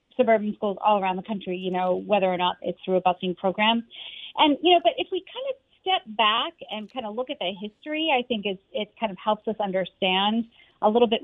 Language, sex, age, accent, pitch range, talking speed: English, female, 30-49, American, 210-265 Hz, 240 wpm